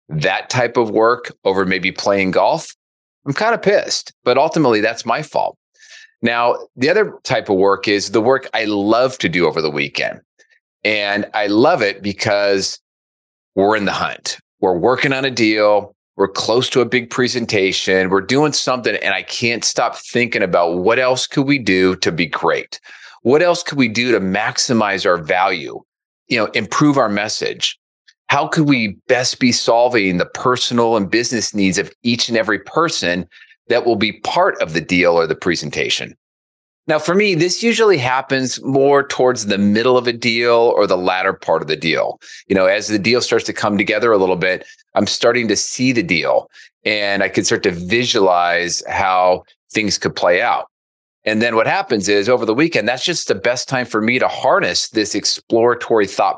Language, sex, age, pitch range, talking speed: English, male, 30-49, 100-135 Hz, 190 wpm